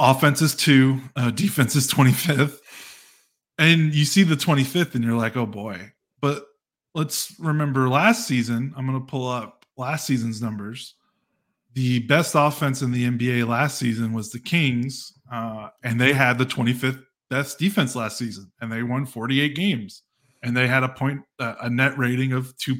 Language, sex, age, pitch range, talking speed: English, male, 20-39, 120-140 Hz, 185 wpm